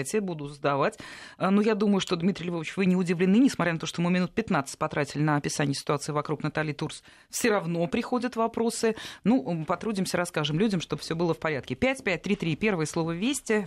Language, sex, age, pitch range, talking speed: Russian, female, 30-49, 155-210 Hz, 190 wpm